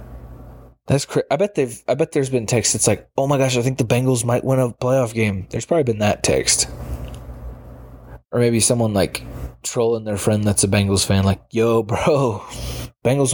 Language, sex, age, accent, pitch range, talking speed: English, male, 20-39, American, 105-135 Hz, 200 wpm